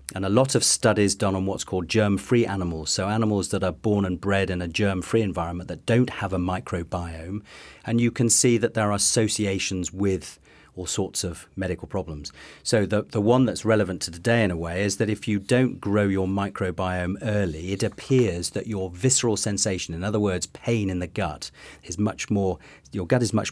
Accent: British